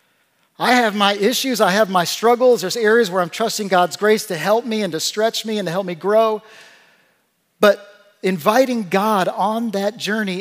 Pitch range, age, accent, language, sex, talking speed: 160-215 Hz, 50-69, American, English, male, 190 wpm